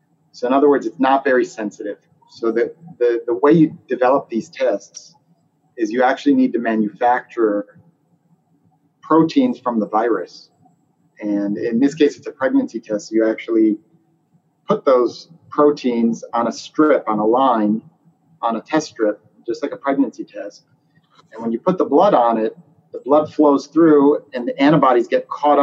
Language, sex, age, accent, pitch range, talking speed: English, male, 30-49, American, 110-160 Hz, 165 wpm